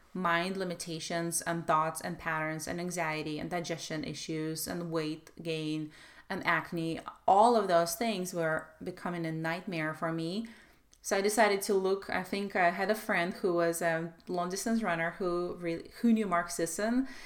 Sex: female